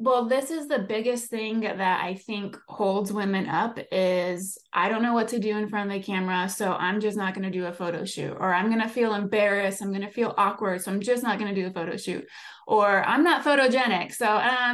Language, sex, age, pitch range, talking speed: English, female, 20-39, 190-230 Hz, 250 wpm